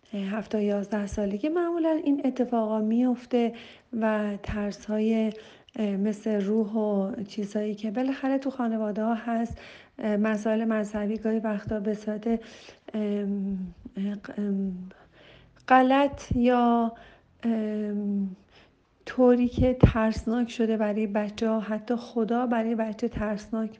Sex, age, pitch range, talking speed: female, 40-59, 215-230 Hz, 95 wpm